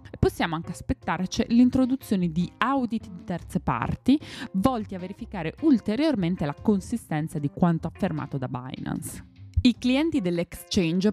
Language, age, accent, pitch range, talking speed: Italian, 20-39, native, 160-225 Hz, 125 wpm